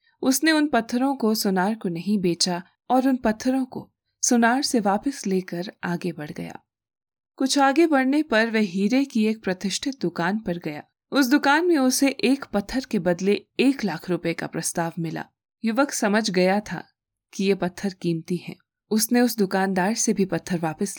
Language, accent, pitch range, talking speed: Hindi, native, 175-245 Hz, 175 wpm